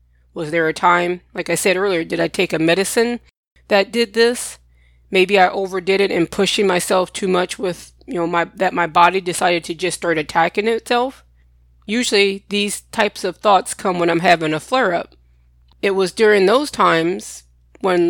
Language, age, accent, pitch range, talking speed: English, 20-39, American, 170-200 Hz, 180 wpm